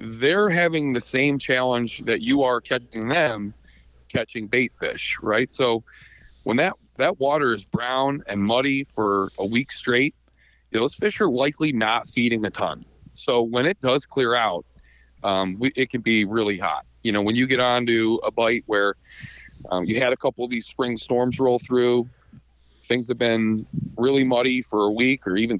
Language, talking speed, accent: English, 180 wpm, American